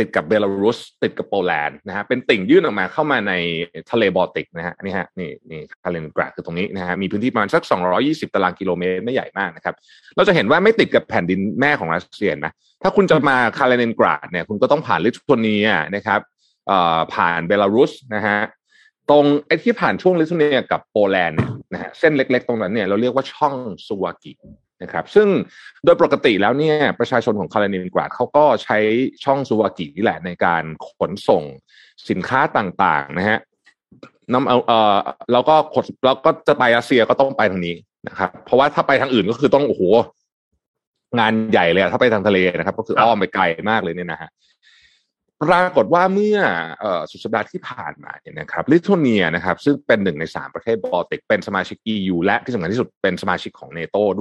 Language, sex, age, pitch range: Thai, male, 30-49, 100-145 Hz